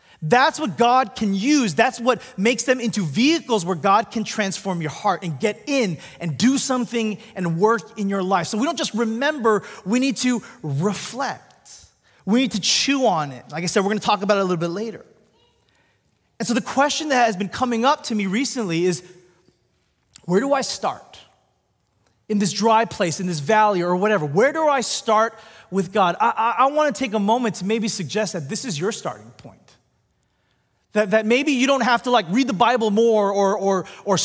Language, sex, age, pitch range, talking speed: English, male, 30-49, 185-245 Hz, 210 wpm